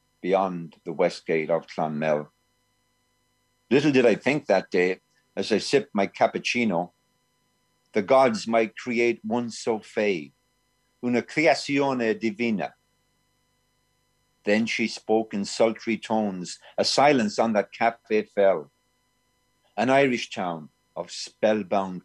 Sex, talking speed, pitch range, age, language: male, 120 wpm, 85-120 Hz, 50-69, English